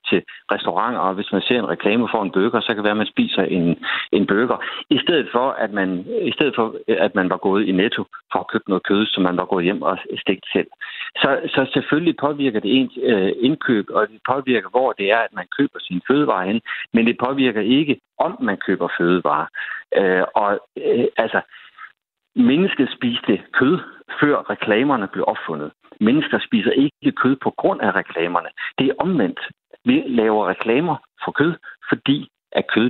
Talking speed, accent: 190 wpm, native